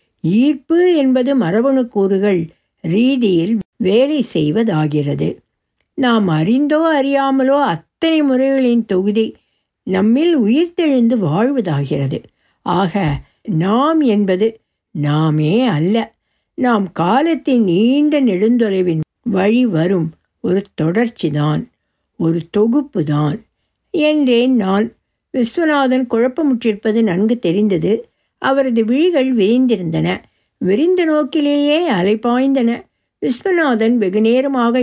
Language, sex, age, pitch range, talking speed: Tamil, female, 60-79, 165-250 Hz, 80 wpm